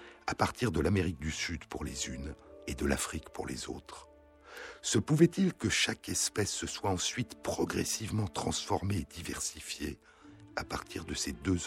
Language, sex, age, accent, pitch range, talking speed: French, male, 60-79, French, 75-105 Hz, 165 wpm